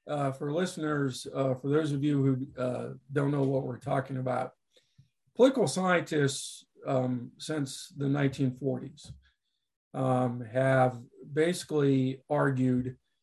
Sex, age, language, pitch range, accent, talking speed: male, 50-69, English, 130-140 Hz, American, 120 wpm